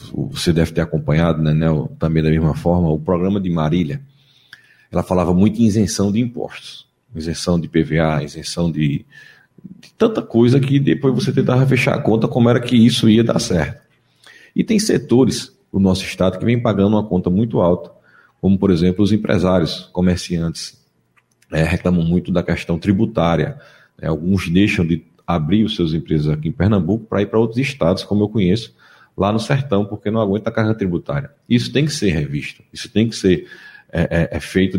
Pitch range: 85-115 Hz